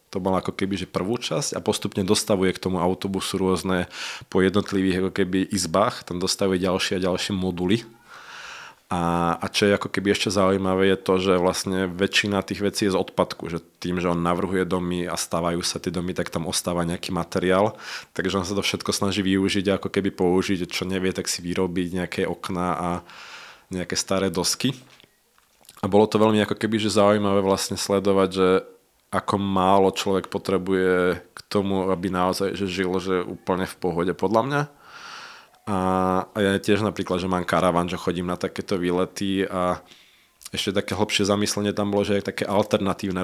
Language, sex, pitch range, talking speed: Czech, male, 90-100 Hz, 180 wpm